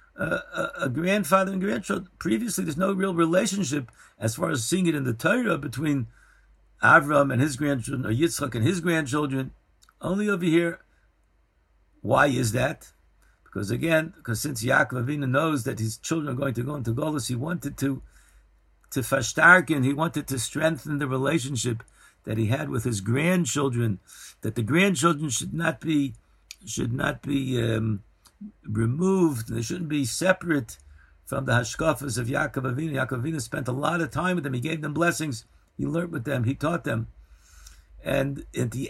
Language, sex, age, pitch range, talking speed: English, male, 60-79, 125-170 Hz, 175 wpm